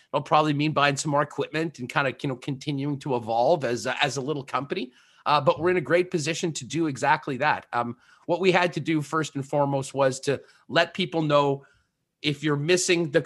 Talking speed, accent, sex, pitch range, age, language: 225 wpm, American, male, 130-160 Hz, 30-49, English